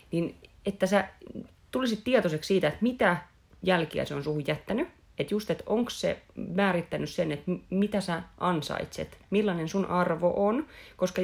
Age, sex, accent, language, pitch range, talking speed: 30-49, female, native, Finnish, 160-220 Hz, 155 wpm